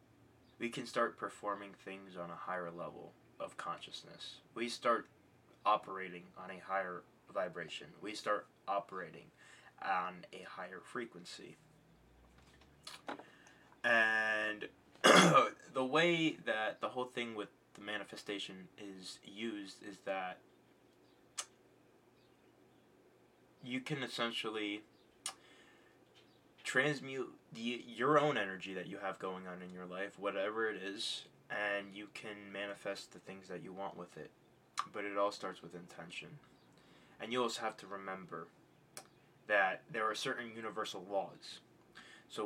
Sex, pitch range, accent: male, 95-115 Hz, American